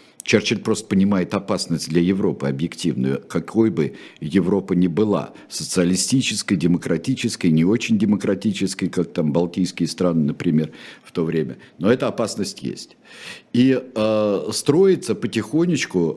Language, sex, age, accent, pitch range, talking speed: Russian, male, 50-69, native, 85-125 Hz, 125 wpm